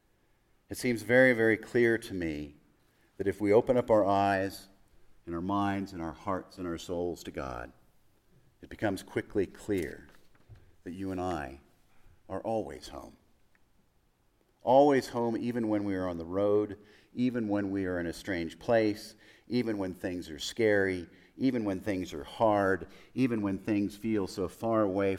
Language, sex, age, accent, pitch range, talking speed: English, male, 50-69, American, 85-110 Hz, 165 wpm